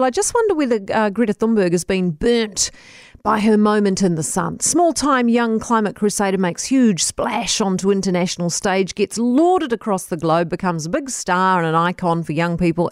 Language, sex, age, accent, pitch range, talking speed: English, female, 40-59, Australian, 185-275 Hz, 190 wpm